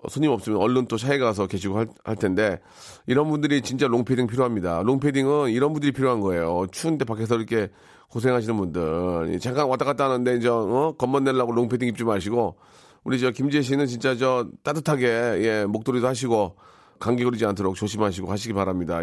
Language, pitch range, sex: Korean, 110-150 Hz, male